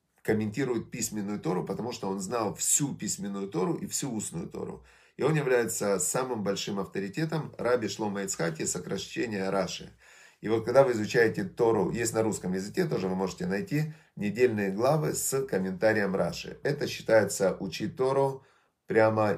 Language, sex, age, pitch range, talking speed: Russian, male, 30-49, 105-155 Hz, 150 wpm